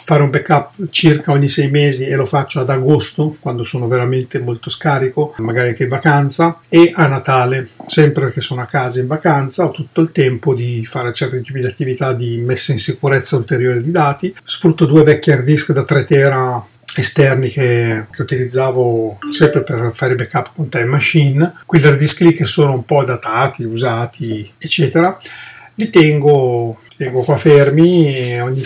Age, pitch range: 40-59, 125-155 Hz